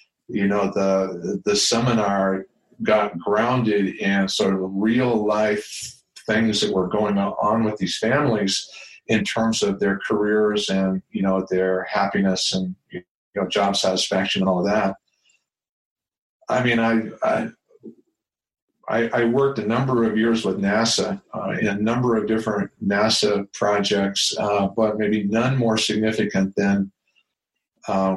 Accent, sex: American, male